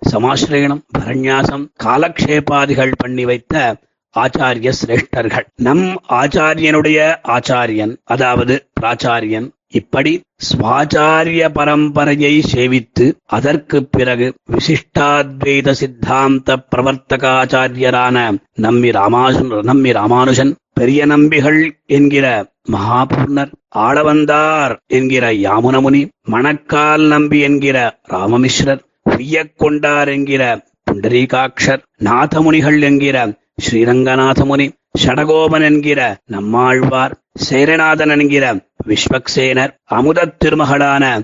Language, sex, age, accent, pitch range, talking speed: Tamil, male, 30-49, native, 125-150 Hz, 75 wpm